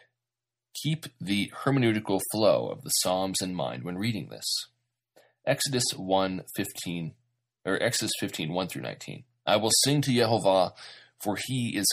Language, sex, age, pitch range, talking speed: English, male, 30-49, 100-120 Hz, 145 wpm